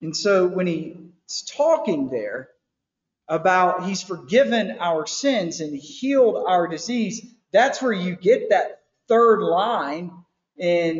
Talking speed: 125 wpm